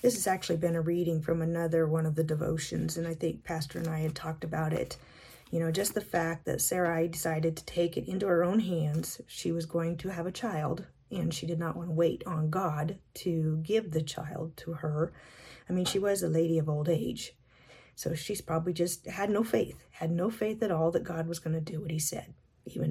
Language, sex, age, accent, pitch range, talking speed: English, female, 40-59, American, 160-180 Hz, 235 wpm